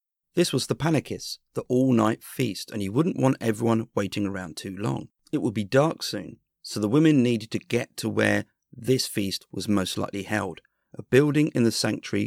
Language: English